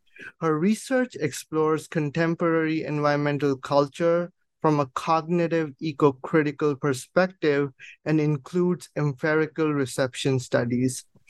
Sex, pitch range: male, 140-160 Hz